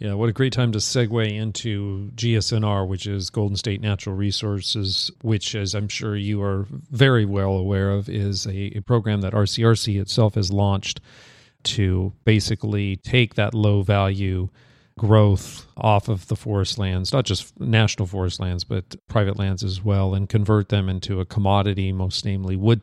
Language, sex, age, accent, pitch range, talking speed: English, male, 40-59, American, 100-115 Hz, 165 wpm